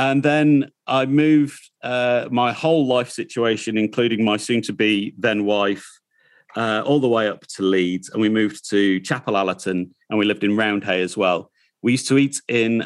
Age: 40-59